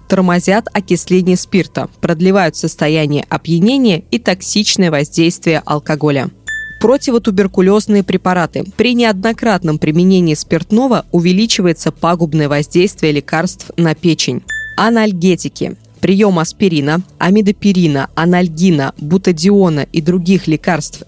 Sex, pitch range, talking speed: female, 165-205 Hz, 90 wpm